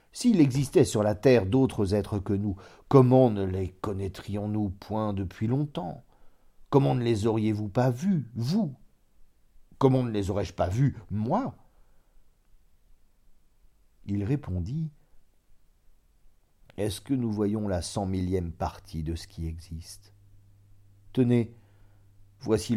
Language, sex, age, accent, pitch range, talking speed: French, male, 50-69, French, 95-130 Hz, 120 wpm